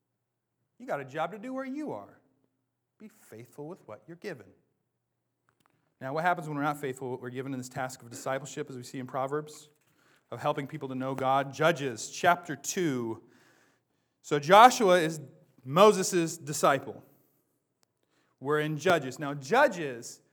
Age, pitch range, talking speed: 30-49, 135-185 Hz, 160 wpm